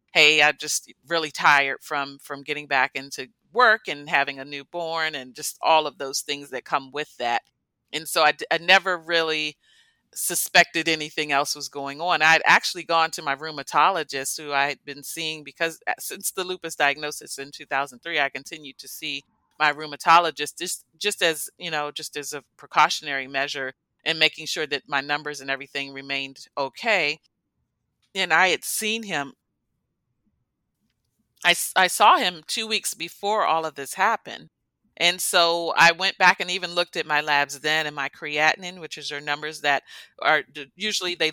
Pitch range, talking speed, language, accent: 145-170 Hz, 175 wpm, English, American